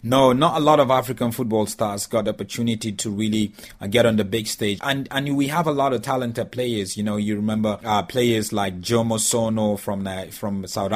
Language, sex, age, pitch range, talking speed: English, male, 30-49, 105-125 Hz, 220 wpm